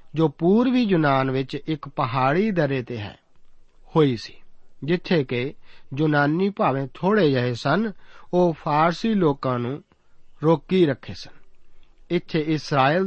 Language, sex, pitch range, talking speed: Punjabi, male, 135-175 Hz, 125 wpm